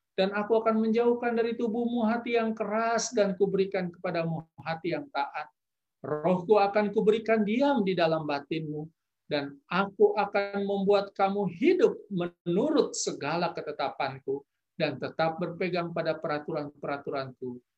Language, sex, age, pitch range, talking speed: Indonesian, male, 50-69, 165-235 Hz, 120 wpm